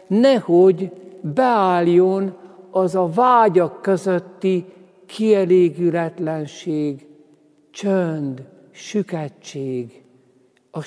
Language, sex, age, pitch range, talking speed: Hungarian, male, 60-79, 120-175 Hz, 55 wpm